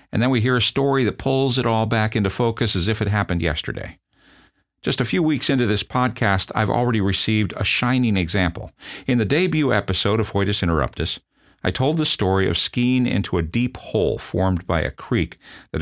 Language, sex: English, male